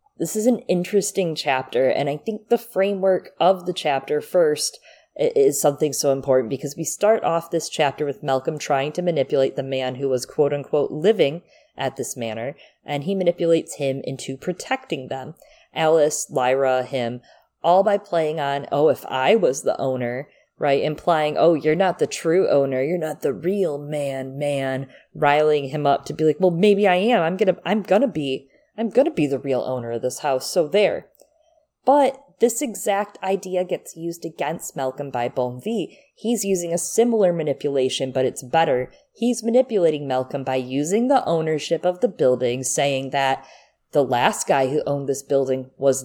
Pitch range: 135-190 Hz